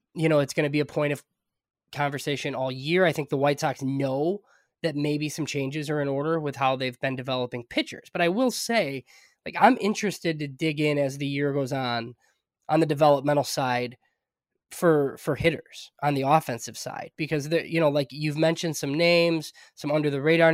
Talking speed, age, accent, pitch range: 200 wpm, 20-39, American, 140-170 Hz